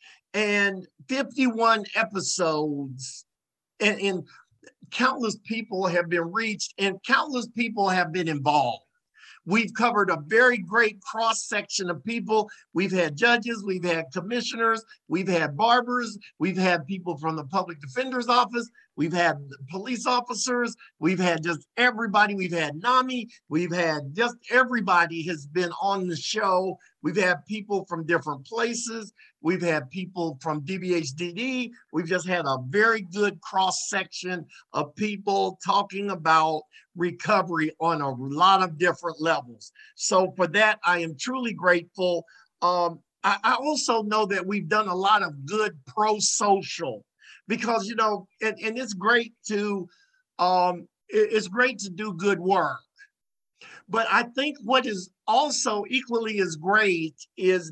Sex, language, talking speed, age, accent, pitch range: male, English, 145 wpm, 50-69, American, 175-225 Hz